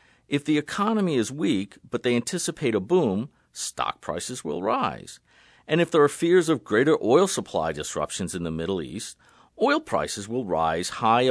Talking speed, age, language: 175 wpm, 50-69, English